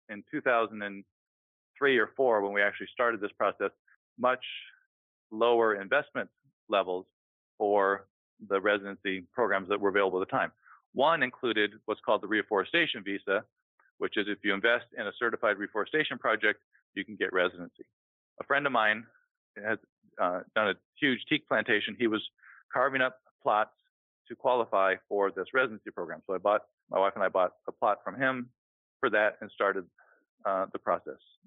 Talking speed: 165 wpm